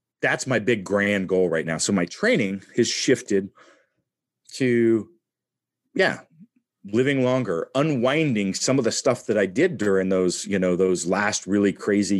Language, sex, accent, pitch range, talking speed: English, male, American, 100-125 Hz, 155 wpm